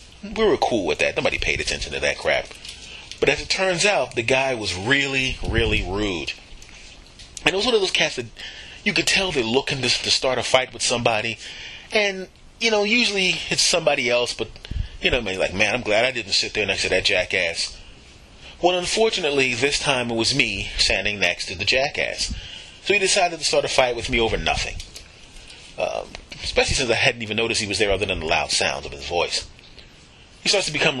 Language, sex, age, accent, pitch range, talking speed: English, male, 30-49, American, 105-150 Hz, 215 wpm